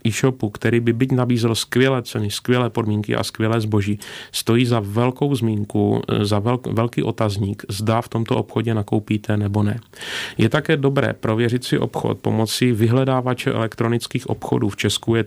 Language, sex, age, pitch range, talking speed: Czech, male, 30-49, 110-130 Hz, 155 wpm